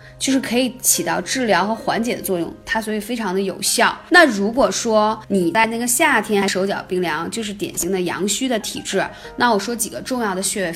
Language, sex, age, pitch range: Chinese, female, 20-39, 195-240 Hz